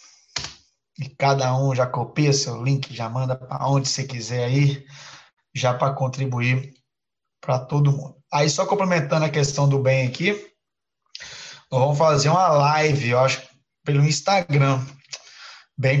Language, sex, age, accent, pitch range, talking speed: Portuguese, male, 20-39, Brazilian, 140-190 Hz, 140 wpm